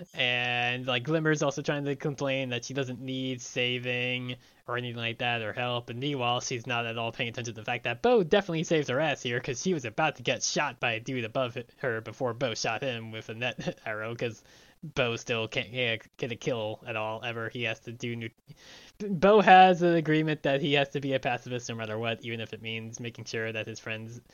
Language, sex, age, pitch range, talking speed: English, male, 20-39, 115-150 Hz, 235 wpm